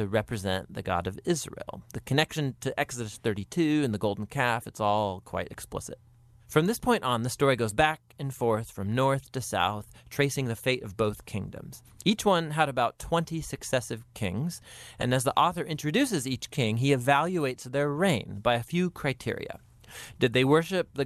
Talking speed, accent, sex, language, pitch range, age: 185 wpm, American, male, English, 110-150 Hz, 30-49